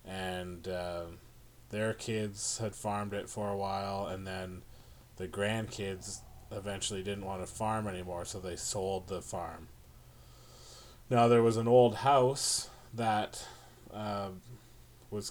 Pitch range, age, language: 95-110 Hz, 30-49, English